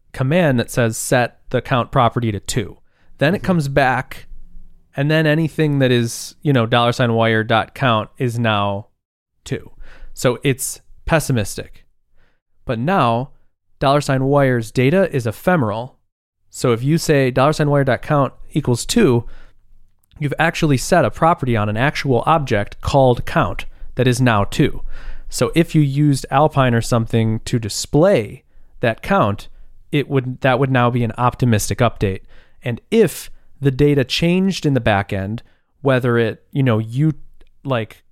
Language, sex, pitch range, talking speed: English, male, 110-145 Hz, 155 wpm